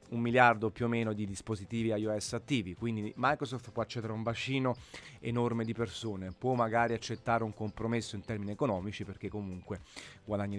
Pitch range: 105-125 Hz